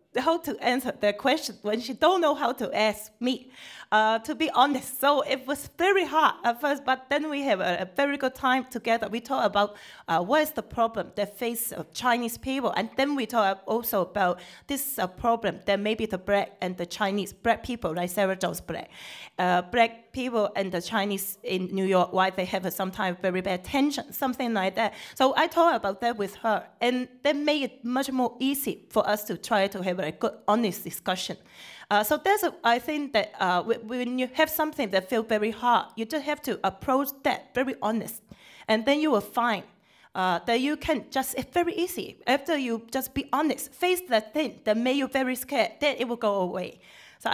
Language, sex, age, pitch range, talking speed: English, female, 30-49, 200-270 Hz, 210 wpm